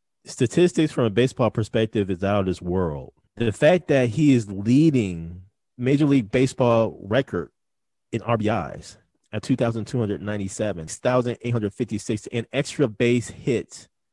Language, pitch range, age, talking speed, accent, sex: English, 100-120 Hz, 30-49, 125 wpm, American, male